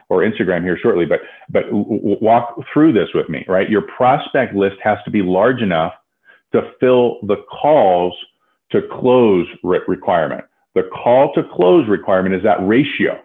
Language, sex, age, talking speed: English, male, 40-59, 170 wpm